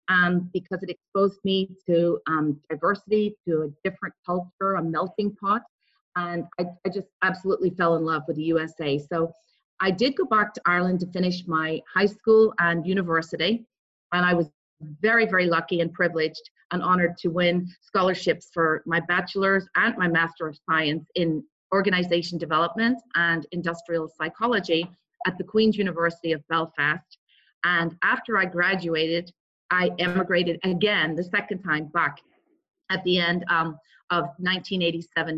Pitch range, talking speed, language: 165-195 Hz, 155 wpm, English